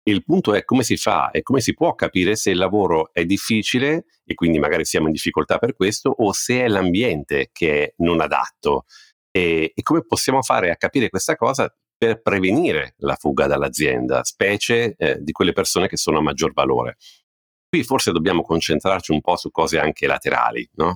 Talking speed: 190 wpm